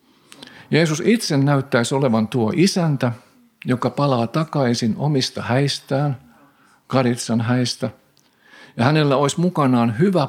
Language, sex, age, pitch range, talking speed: Finnish, male, 50-69, 115-145 Hz, 105 wpm